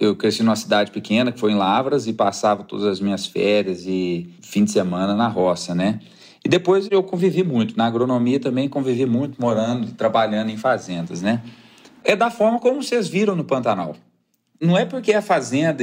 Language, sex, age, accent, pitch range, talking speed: Portuguese, male, 40-59, Brazilian, 110-170 Hz, 190 wpm